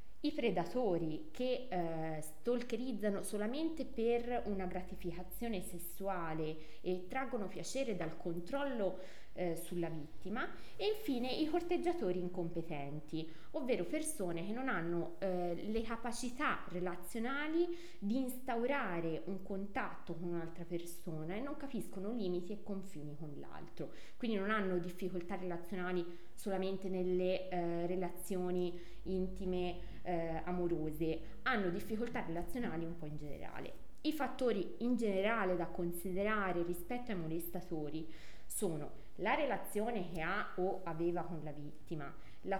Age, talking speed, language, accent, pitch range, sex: 20-39, 120 wpm, Italian, native, 170-235 Hz, female